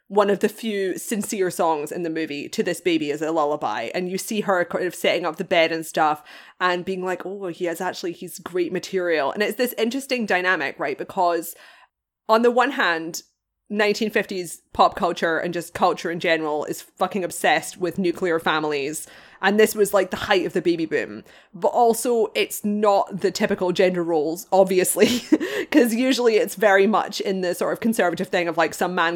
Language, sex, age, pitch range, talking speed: English, female, 20-39, 175-215 Hz, 200 wpm